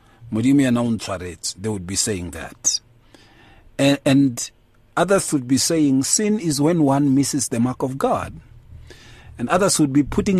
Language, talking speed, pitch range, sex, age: English, 140 wpm, 115-175 Hz, male, 50-69